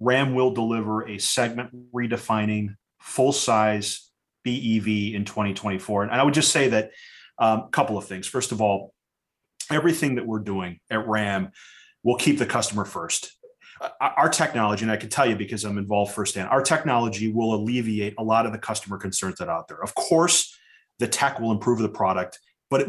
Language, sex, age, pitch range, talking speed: English, male, 30-49, 105-125 Hz, 180 wpm